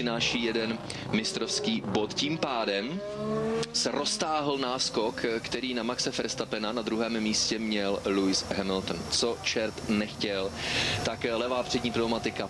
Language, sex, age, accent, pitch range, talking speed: Czech, male, 30-49, native, 110-130 Hz, 125 wpm